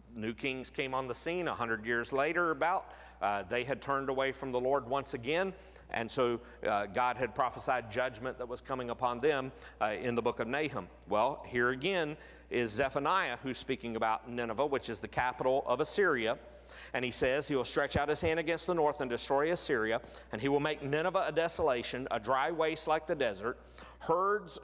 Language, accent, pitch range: English, American, 120-160 Hz